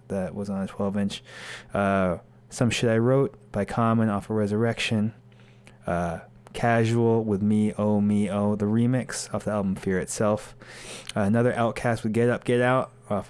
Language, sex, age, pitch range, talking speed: English, male, 20-39, 105-120 Hz, 170 wpm